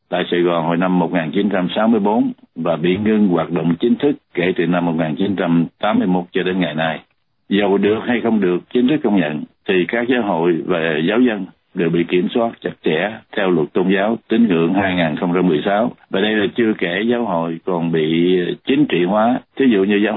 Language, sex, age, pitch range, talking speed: Vietnamese, male, 60-79, 85-105 Hz, 195 wpm